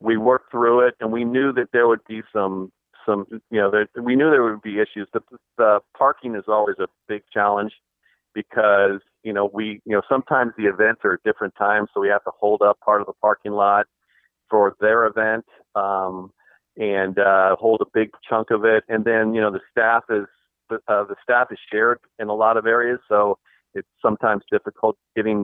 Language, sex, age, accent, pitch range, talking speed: English, male, 40-59, American, 100-115 Hz, 210 wpm